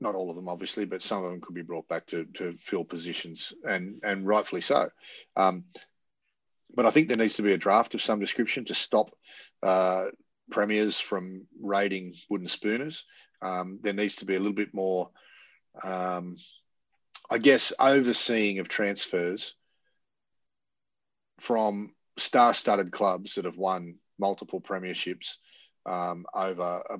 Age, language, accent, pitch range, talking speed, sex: 30-49, English, Australian, 90-105 Hz, 150 wpm, male